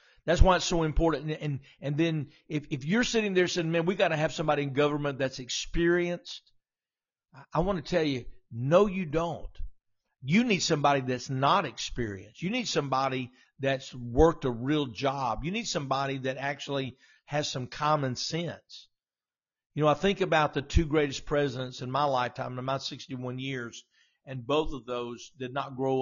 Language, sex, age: English, male, 50-69